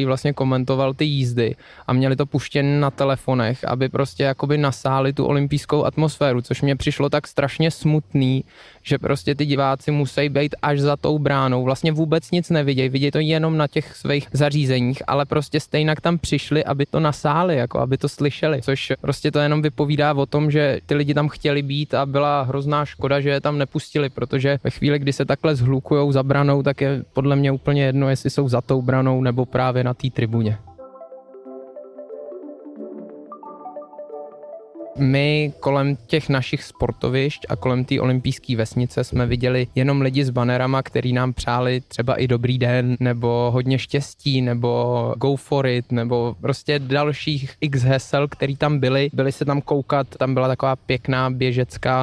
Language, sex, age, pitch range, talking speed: Czech, male, 20-39, 130-145 Hz, 175 wpm